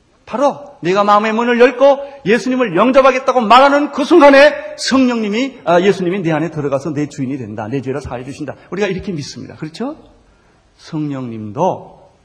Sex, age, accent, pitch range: male, 40-59, native, 125-185 Hz